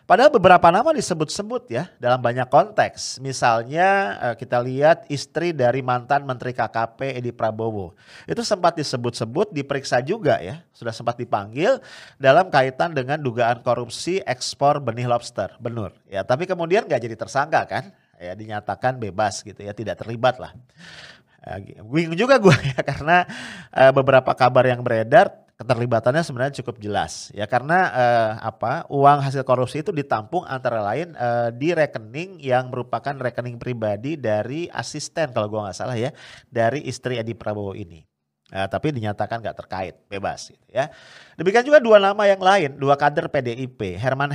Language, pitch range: English, 115-150 Hz